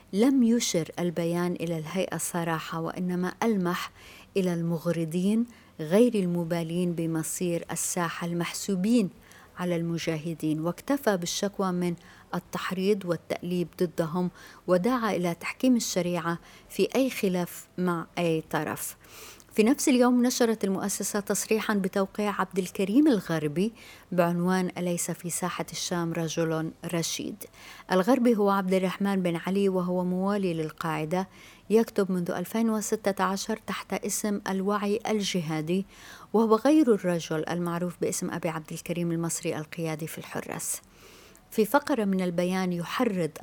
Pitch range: 170-200 Hz